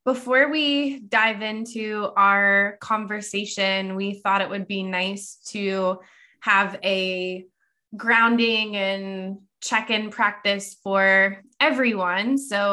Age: 20-39